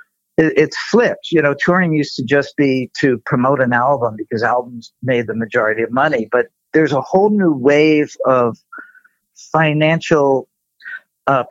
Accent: American